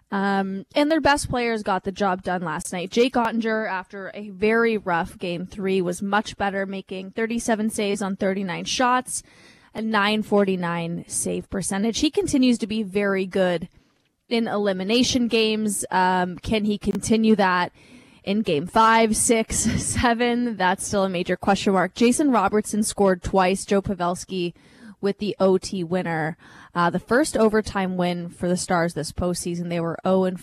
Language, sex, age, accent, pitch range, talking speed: English, female, 20-39, American, 185-220 Hz, 160 wpm